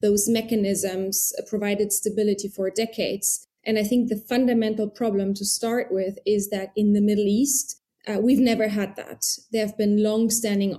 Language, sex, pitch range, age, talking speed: English, female, 200-225 Hz, 20-39, 165 wpm